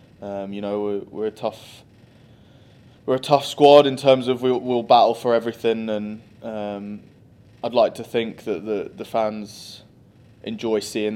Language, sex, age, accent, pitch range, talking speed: English, male, 20-39, British, 100-115 Hz, 170 wpm